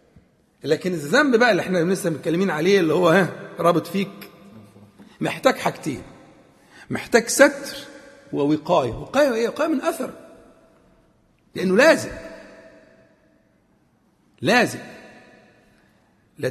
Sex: male